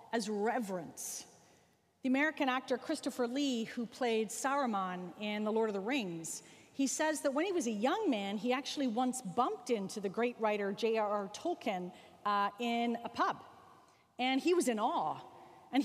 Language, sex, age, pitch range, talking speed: English, female, 40-59, 230-310 Hz, 170 wpm